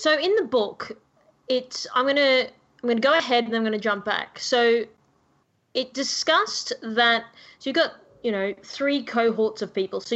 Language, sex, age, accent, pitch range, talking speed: English, female, 20-39, Australian, 200-250 Hz, 195 wpm